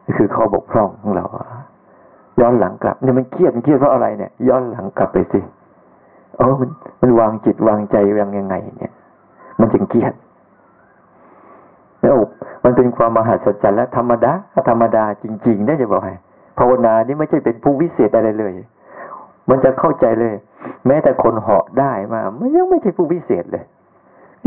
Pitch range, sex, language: 105-130 Hz, male, Thai